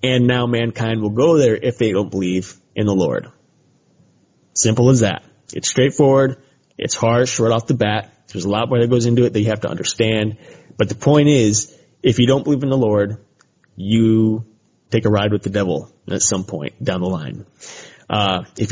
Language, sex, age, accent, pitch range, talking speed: English, male, 30-49, American, 105-130 Hz, 200 wpm